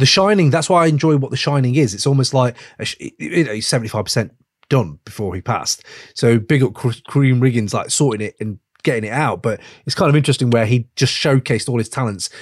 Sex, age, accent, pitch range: male, 30-49, British, 110-140 Hz